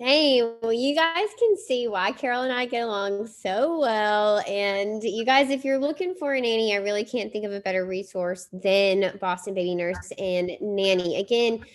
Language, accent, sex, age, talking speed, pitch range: English, American, female, 20-39, 195 wpm, 190-255 Hz